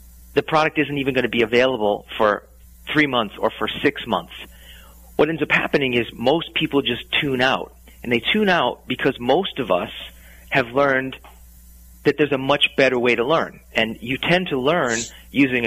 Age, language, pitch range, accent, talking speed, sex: 40-59, English, 95-140 Hz, American, 185 wpm, male